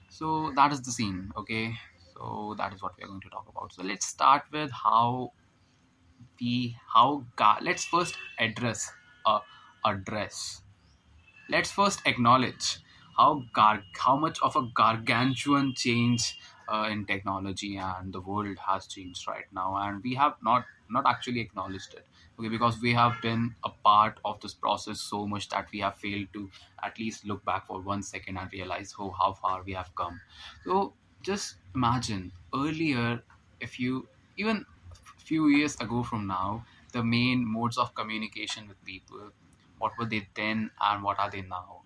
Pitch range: 100-120 Hz